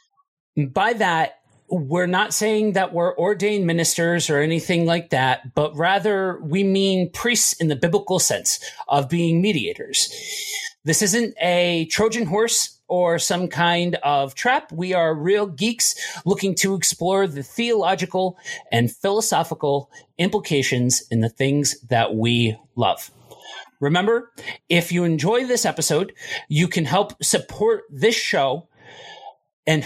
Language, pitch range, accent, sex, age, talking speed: English, 150-200 Hz, American, male, 40-59, 135 wpm